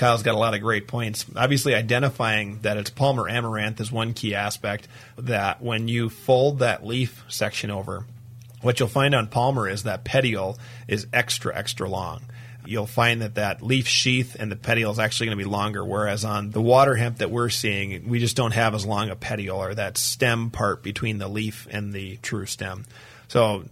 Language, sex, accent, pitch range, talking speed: English, male, American, 110-125 Hz, 200 wpm